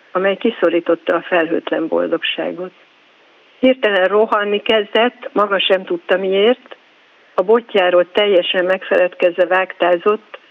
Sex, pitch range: female, 180-220 Hz